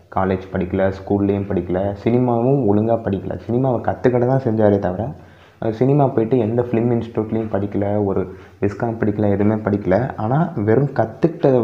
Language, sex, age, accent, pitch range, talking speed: Tamil, male, 20-39, native, 95-115 Hz, 140 wpm